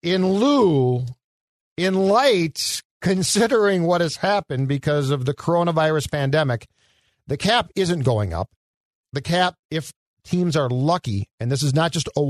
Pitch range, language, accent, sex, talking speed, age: 125-160 Hz, English, American, male, 140 wpm, 50-69